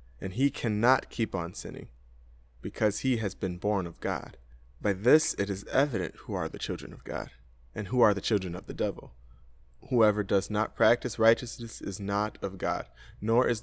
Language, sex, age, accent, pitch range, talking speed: English, male, 20-39, American, 70-120 Hz, 190 wpm